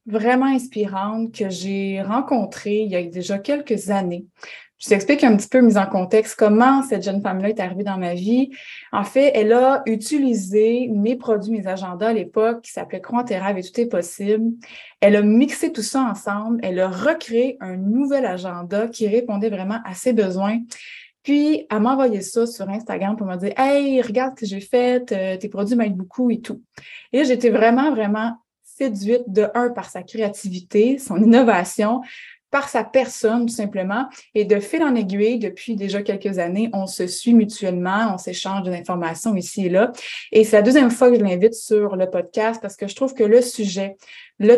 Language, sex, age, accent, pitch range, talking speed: French, female, 20-39, Canadian, 195-240 Hz, 195 wpm